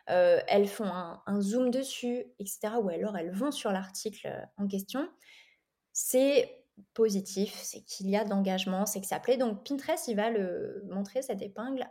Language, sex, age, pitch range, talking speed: French, female, 20-39, 205-255 Hz, 180 wpm